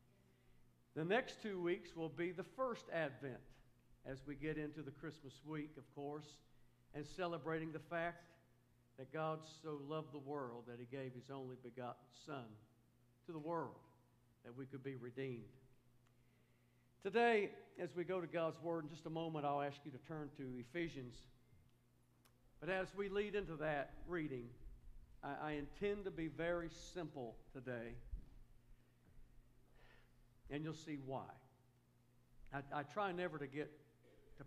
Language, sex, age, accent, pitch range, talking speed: English, male, 50-69, American, 120-165 Hz, 150 wpm